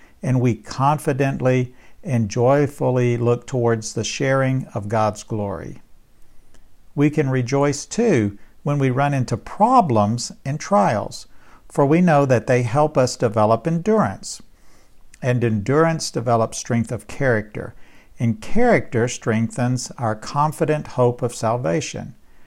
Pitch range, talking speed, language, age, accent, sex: 115-145 Hz, 125 wpm, English, 60-79, American, male